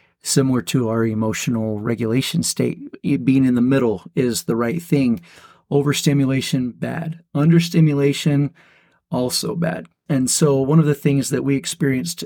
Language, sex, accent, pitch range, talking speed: English, male, American, 125-150 Hz, 135 wpm